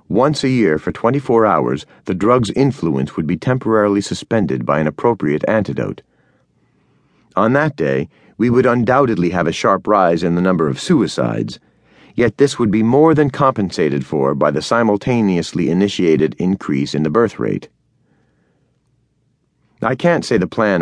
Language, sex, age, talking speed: English, male, 40-59, 155 wpm